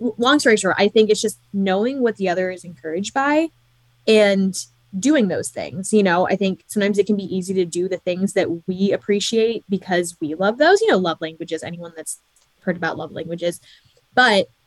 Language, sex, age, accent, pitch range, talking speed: English, female, 10-29, American, 175-205 Hz, 200 wpm